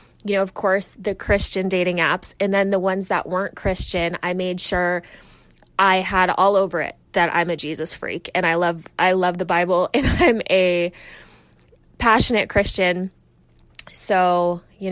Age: 20-39